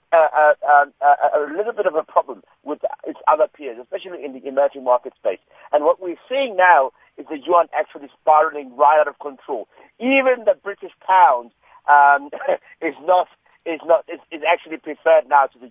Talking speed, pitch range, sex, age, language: 190 wpm, 125-165 Hz, male, 50-69, English